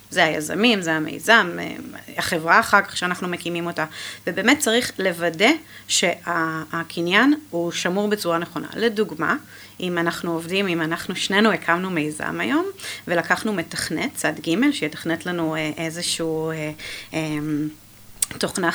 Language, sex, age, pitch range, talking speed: Hebrew, female, 30-49, 160-210 Hz, 115 wpm